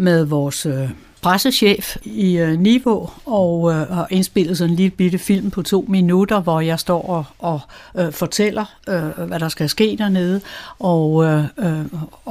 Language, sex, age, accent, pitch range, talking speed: Danish, female, 60-79, native, 165-195 Hz, 170 wpm